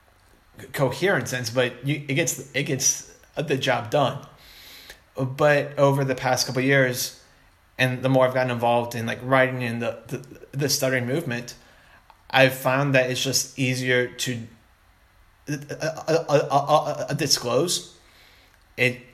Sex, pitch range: male, 120-130 Hz